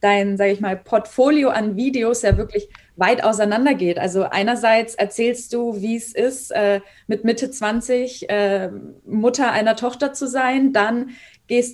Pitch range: 205-245 Hz